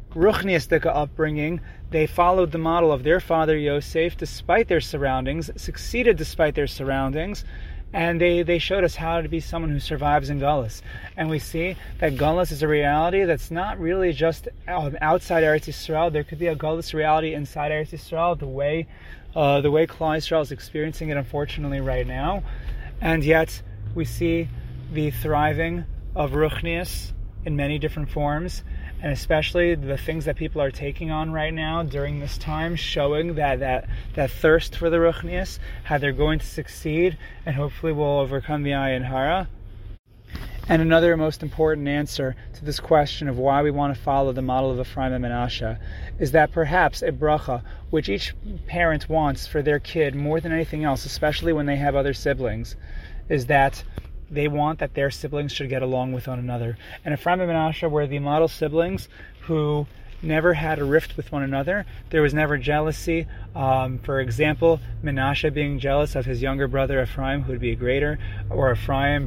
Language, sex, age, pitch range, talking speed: English, male, 30-49, 135-160 Hz, 180 wpm